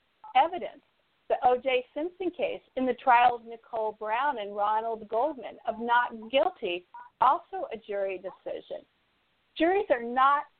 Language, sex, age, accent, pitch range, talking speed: English, female, 50-69, American, 225-285 Hz, 135 wpm